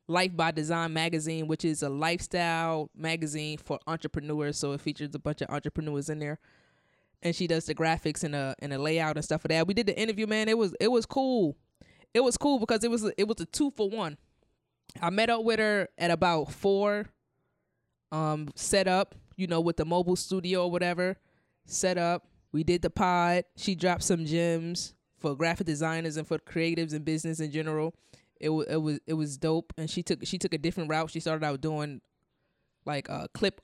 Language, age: English, 10-29